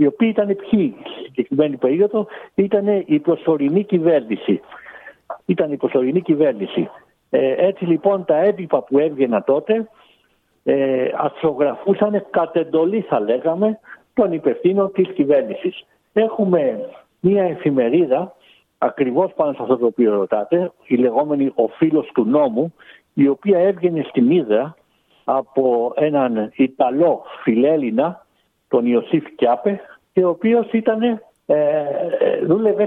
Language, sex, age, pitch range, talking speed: Greek, male, 60-79, 150-215 Hz, 120 wpm